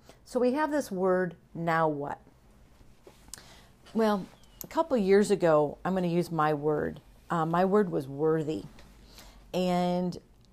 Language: English